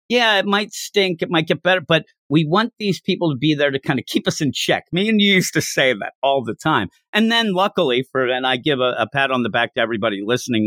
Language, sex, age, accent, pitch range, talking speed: English, male, 50-69, American, 125-185 Hz, 275 wpm